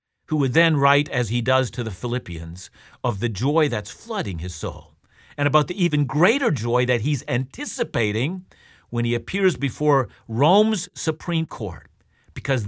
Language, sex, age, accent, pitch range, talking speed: English, male, 50-69, American, 110-160 Hz, 160 wpm